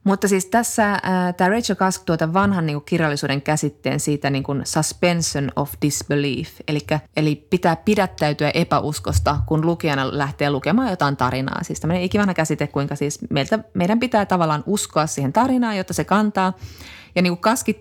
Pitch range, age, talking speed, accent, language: 150-190 Hz, 20-39, 160 wpm, native, Finnish